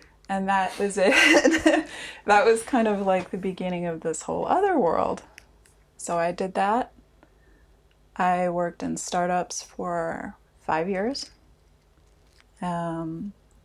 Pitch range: 160-195 Hz